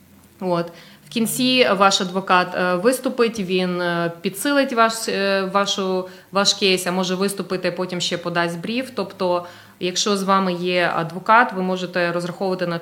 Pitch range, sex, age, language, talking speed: 175-210 Hz, female, 20-39, English, 135 wpm